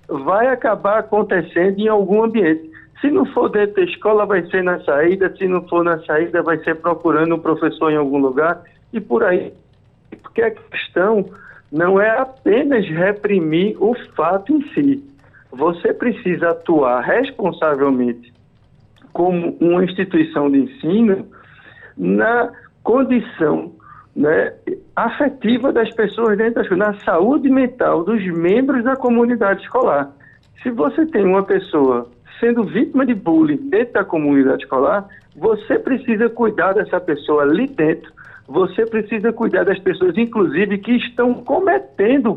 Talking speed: 135 wpm